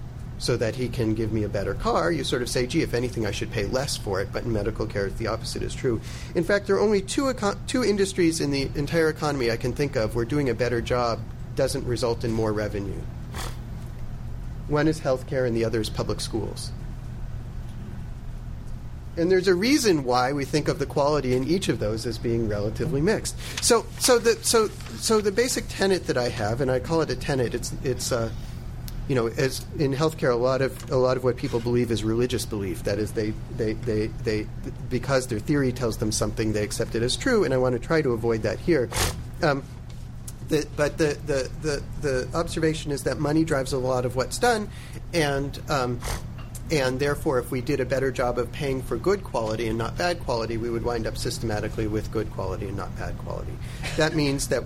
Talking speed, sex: 215 wpm, male